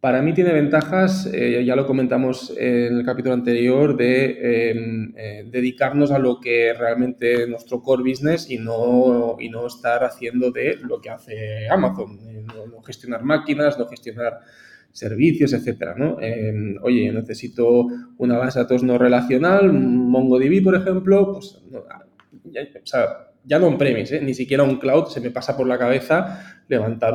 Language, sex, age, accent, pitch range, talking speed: English, male, 20-39, Spanish, 115-145 Hz, 170 wpm